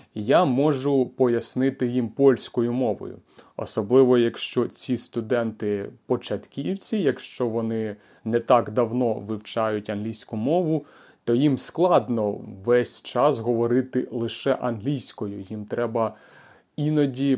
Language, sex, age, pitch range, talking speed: Ukrainian, male, 30-49, 115-145 Hz, 105 wpm